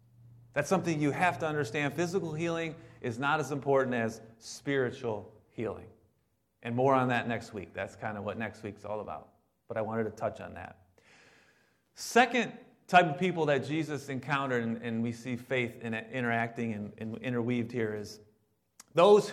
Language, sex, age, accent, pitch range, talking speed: English, male, 30-49, American, 120-180 Hz, 165 wpm